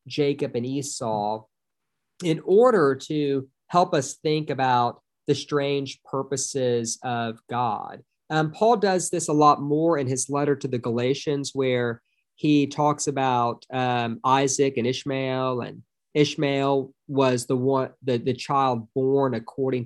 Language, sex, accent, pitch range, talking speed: English, male, American, 120-145 Hz, 140 wpm